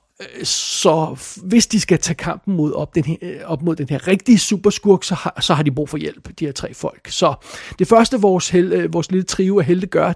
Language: Danish